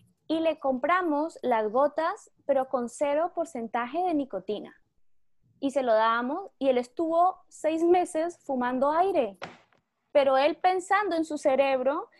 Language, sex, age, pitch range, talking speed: English, female, 20-39, 245-315 Hz, 140 wpm